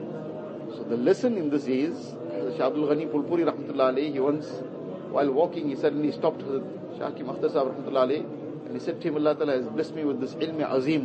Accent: Indian